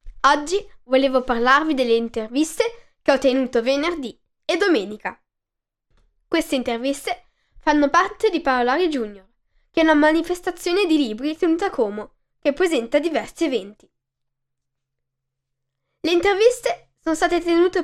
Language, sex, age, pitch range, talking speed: Italian, female, 10-29, 235-345 Hz, 120 wpm